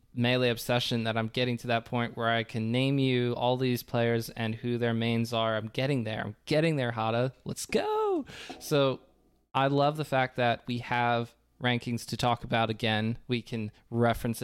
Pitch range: 115-130 Hz